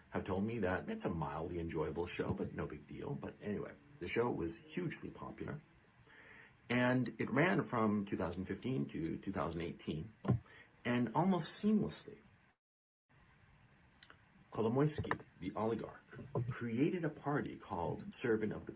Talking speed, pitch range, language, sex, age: 130 wpm, 95-135 Hz, English, male, 50-69